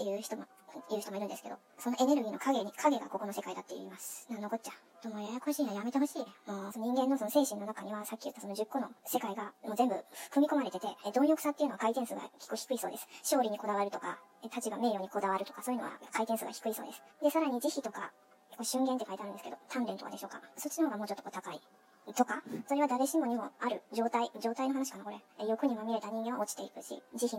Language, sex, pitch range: Japanese, male, 210-270 Hz